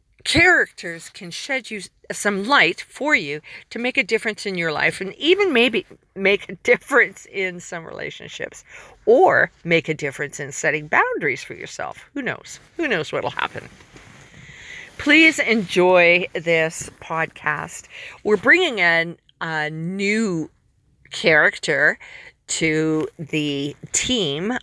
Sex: female